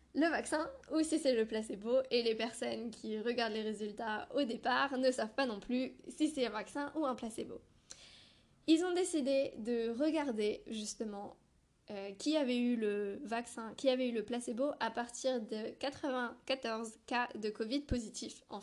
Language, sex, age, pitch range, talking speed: French, female, 10-29, 220-275 Hz, 175 wpm